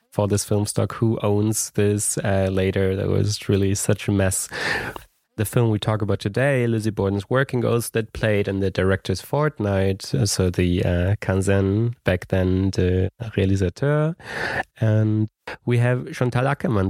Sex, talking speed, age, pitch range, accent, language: male, 155 wpm, 30-49, 100-125 Hz, German, English